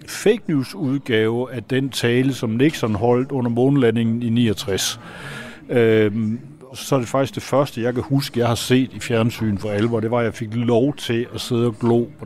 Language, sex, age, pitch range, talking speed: Danish, male, 60-79, 110-130 Hz, 205 wpm